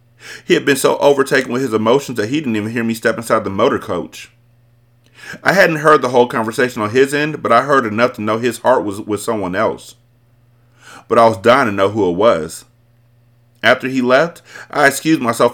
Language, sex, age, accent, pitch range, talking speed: English, male, 30-49, American, 105-120 Hz, 210 wpm